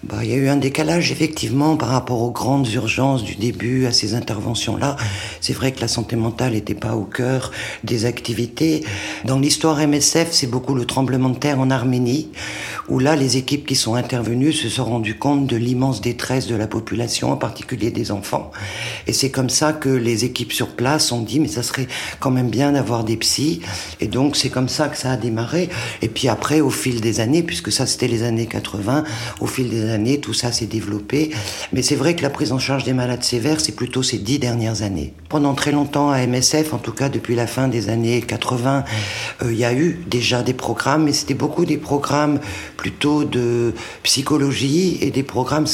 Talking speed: 215 wpm